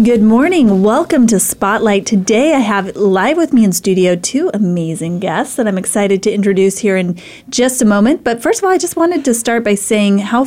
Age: 30-49